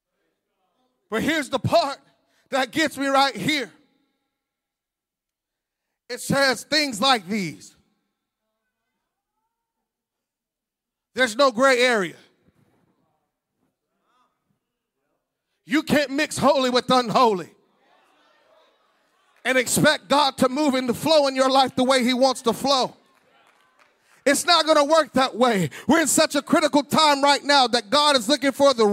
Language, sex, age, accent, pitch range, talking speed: English, male, 40-59, American, 265-310 Hz, 130 wpm